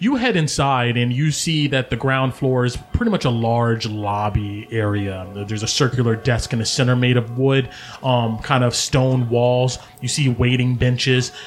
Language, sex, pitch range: English, male, 115-135 Hz